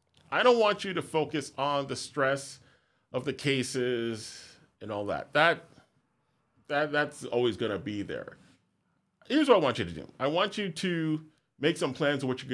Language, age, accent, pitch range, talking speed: English, 30-49, American, 105-140 Hz, 190 wpm